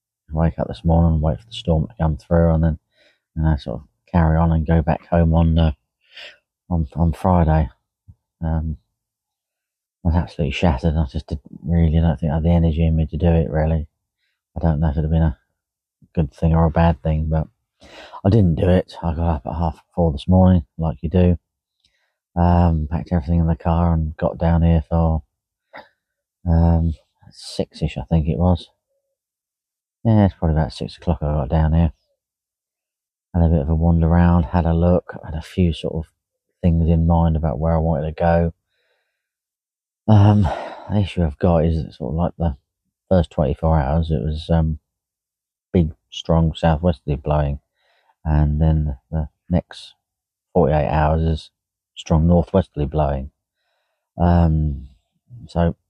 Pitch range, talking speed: 80-85 Hz, 185 wpm